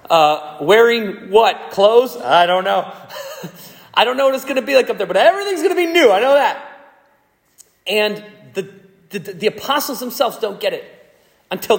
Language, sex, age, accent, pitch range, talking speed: English, male, 30-49, American, 175-225 Hz, 190 wpm